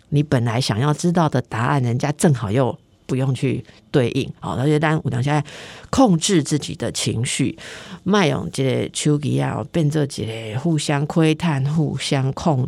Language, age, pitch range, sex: Chinese, 50-69, 135-175 Hz, female